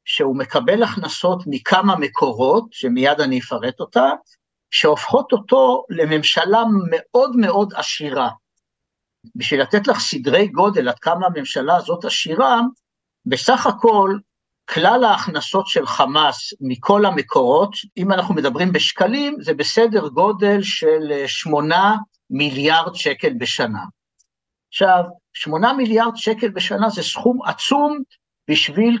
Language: Hebrew